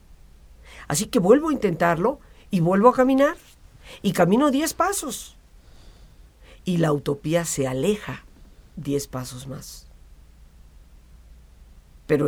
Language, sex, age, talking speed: Spanish, female, 50-69, 110 wpm